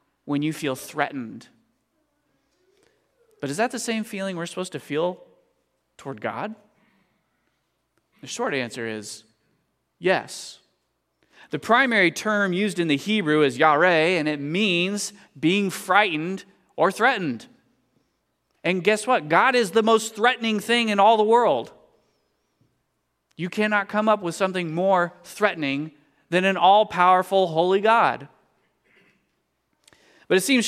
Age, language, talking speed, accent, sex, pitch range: 30-49, English, 130 wpm, American, male, 165-210 Hz